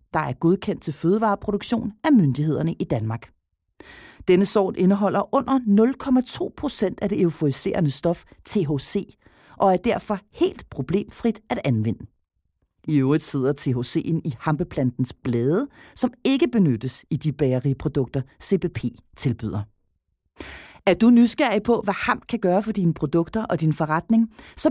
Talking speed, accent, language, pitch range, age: 140 wpm, native, Danish, 140-225 Hz, 40-59